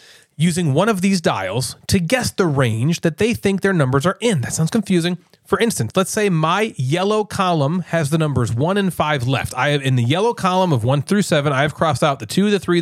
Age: 30-49